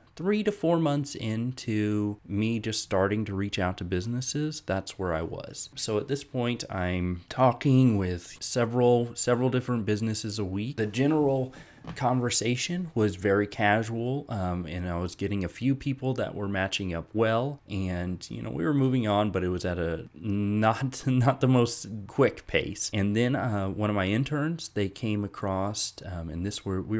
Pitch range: 95-125 Hz